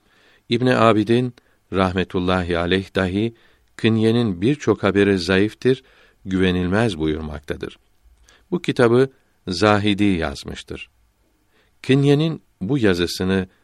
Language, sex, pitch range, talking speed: Turkish, male, 95-115 Hz, 80 wpm